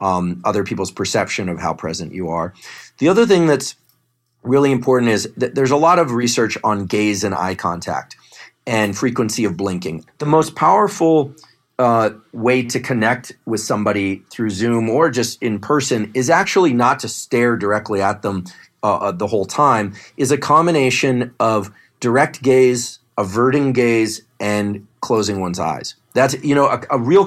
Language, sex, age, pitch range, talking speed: English, male, 40-59, 105-130 Hz, 165 wpm